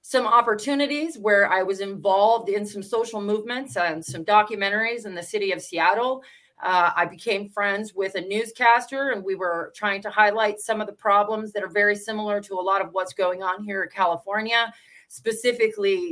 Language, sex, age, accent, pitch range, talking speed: English, female, 30-49, American, 185-230 Hz, 185 wpm